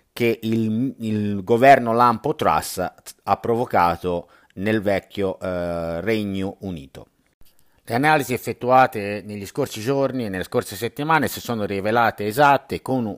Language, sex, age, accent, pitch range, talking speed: Italian, male, 50-69, native, 95-125 Hz, 130 wpm